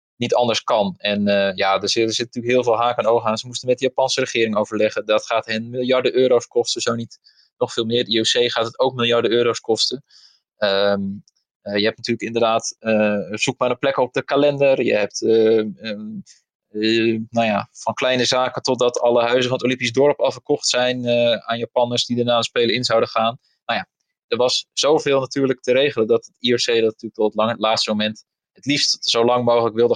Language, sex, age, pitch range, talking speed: Dutch, male, 20-39, 110-125 Hz, 220 wpm